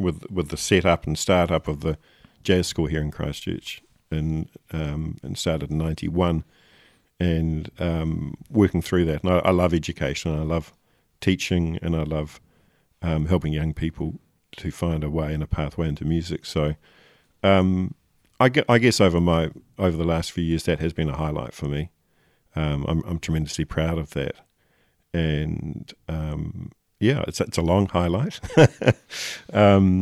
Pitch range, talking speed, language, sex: 80-90 Hz, 170 wpm, English, male